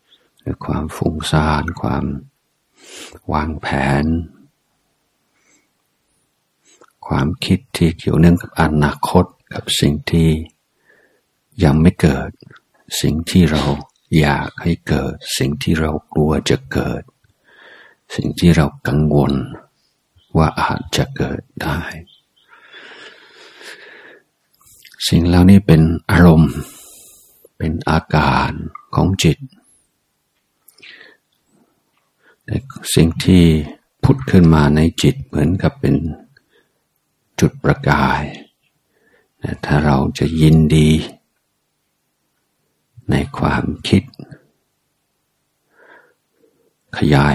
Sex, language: male, Thai